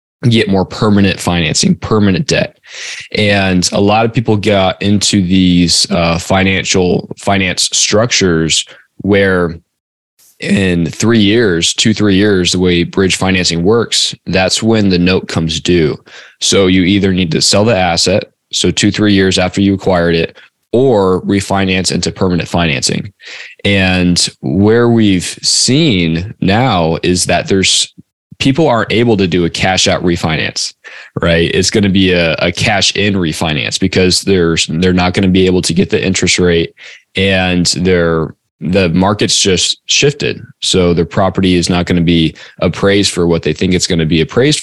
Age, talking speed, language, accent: 20-39, 165 wpm, English, American